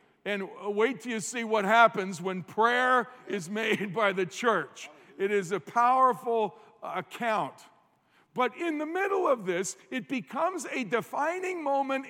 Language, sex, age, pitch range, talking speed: English, male, 50-69, 205-260 Hz, 150 wpm